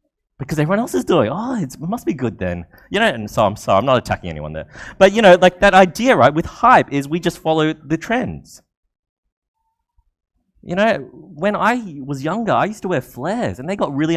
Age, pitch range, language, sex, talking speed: 30-49, 120-195 Hz, English, male, 225 wpm